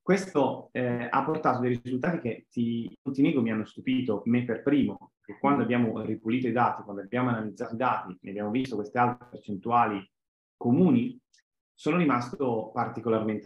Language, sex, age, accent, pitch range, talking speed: Italian, male, 30-49, native, 105-135 Hz, 165 wpm